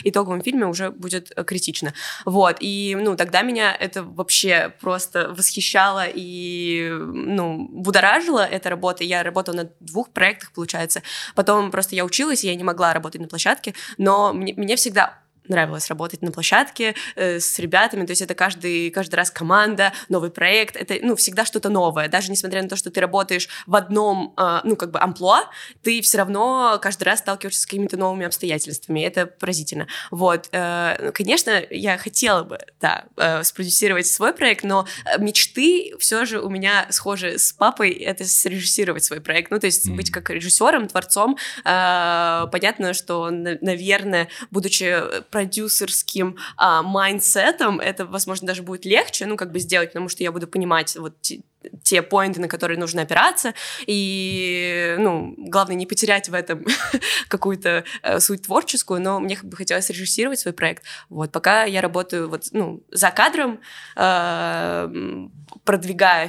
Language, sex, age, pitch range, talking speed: Russian, female, 20-39, 175-205 Hz, 150 wpm